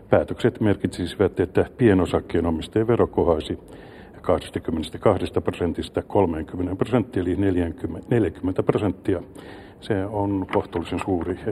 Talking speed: 90 wpm